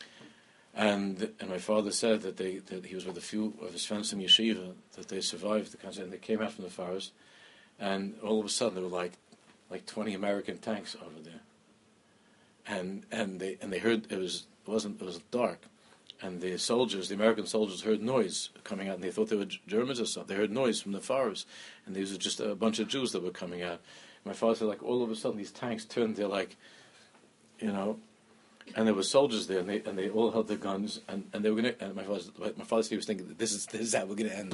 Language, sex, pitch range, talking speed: English, male, 95-110 Hz, 250 wpm